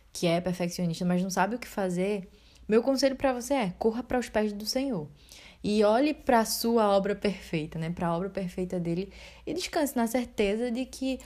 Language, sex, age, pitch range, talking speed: Portuguese, female, 10-29, 180-240 Hz, 205 wpm